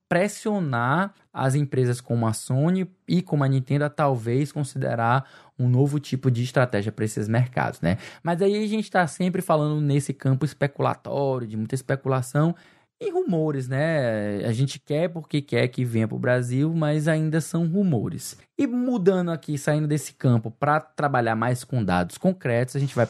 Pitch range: 130-180 Hz